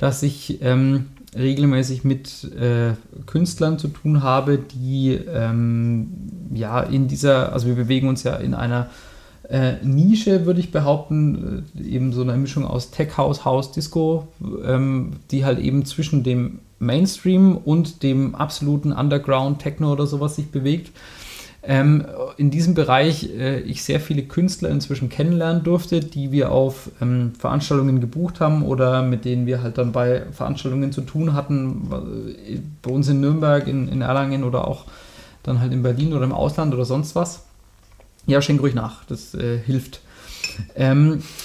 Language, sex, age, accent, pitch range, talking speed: German, male, 30-49, German, 130-155 Hz, 155 wpm